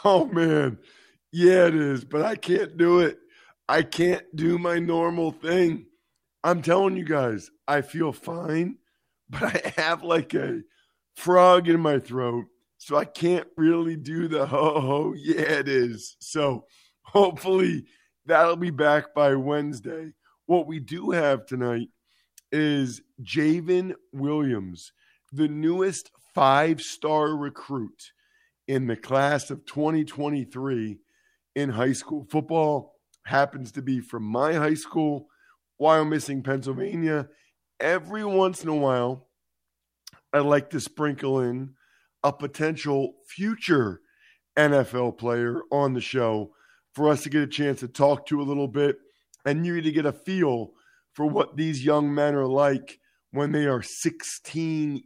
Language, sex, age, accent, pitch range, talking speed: English, male, 50-69, American, 135-165 Hz, 145 wpm